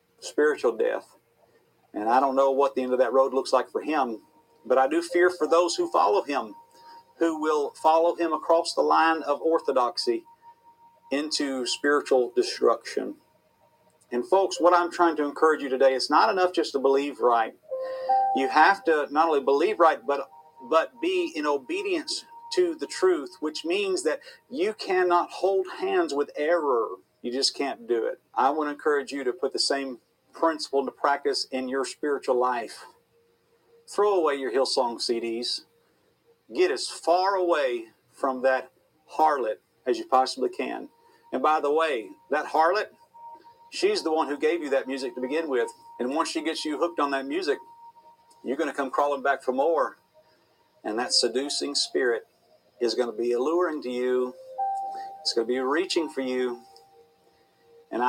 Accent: American